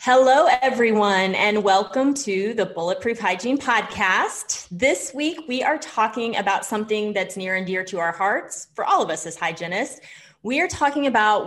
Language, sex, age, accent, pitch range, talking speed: English, female, 30-49, American, 185-235 Hz, 175 wpm